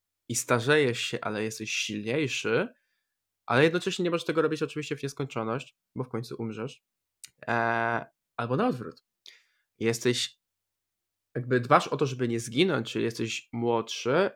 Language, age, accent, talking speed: Polish, 20-39, native, 140 wpm